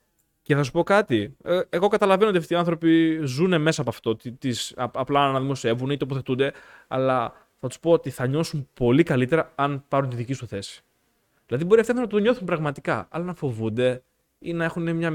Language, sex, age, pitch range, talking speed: Greek, male, 20-39, 125-175 Hz, 195 wpm